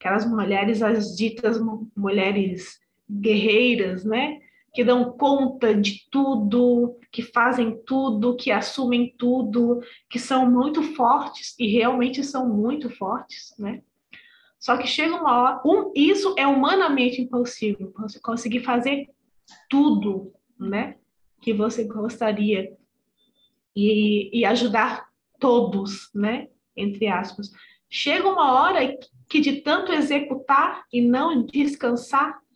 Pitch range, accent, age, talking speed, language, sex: 220-275 Hz, Brazilian, 20-39, 120 wpm, Portuguese, female